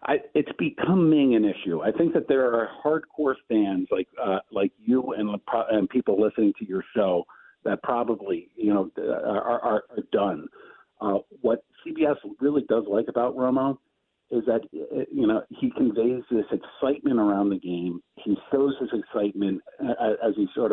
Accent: American